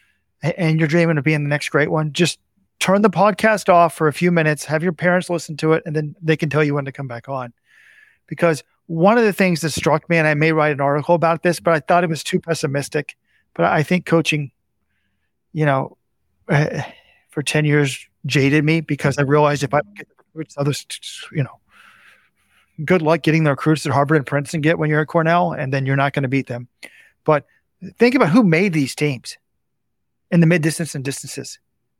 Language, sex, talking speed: English, male, 220 wpm